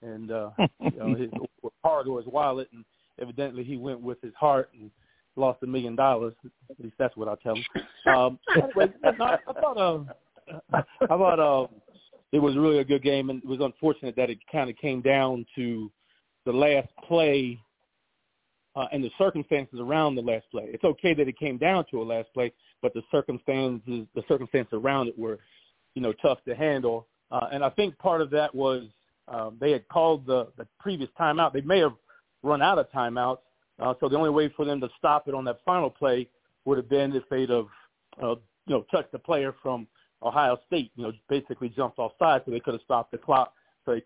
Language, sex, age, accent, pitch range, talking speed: English, male, 40-59, American, 125-150 Hz, 205 wpm